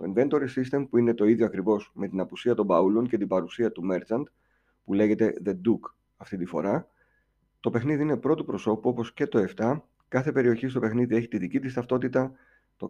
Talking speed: 205 wpm